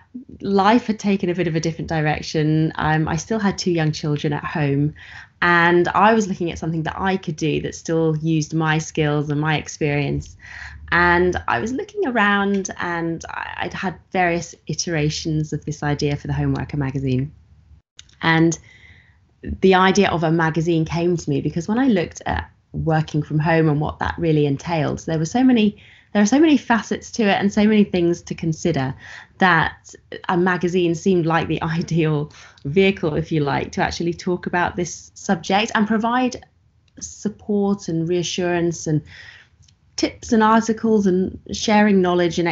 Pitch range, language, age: 155-195 Hz, English, 20-39